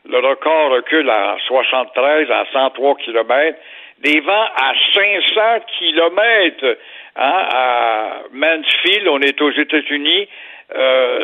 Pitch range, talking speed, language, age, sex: 155-260 Hz, 110 wpm, French, 60-79, male